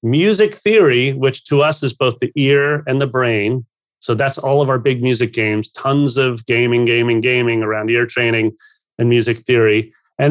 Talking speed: 185 wpm